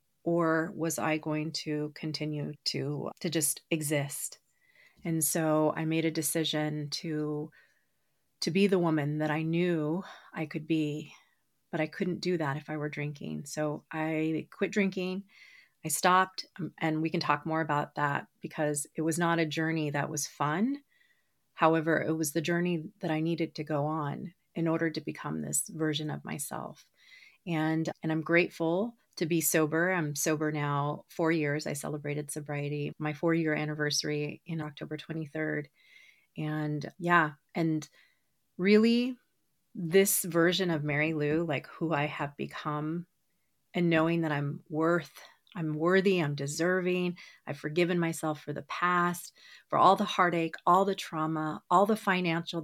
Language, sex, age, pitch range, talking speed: English, female, 30-49, 150-175 Hz, 155 wpm